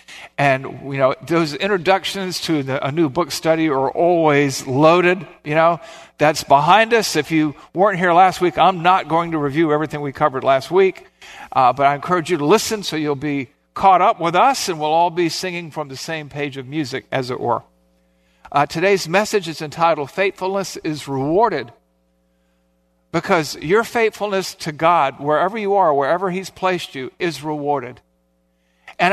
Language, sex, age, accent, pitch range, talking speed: English, male, 50-69, American, 145-190 Hz, 175 wpm